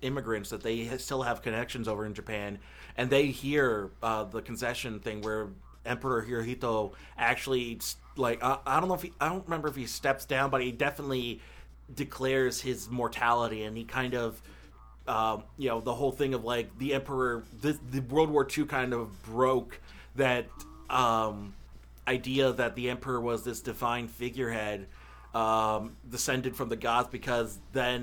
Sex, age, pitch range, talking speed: male, 30-49, 115-130 Hz, 170 wpm